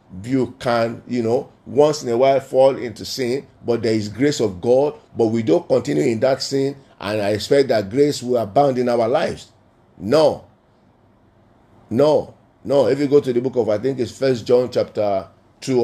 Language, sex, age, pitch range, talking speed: English, male, 50-69, 115-140 Hz, 195 wpm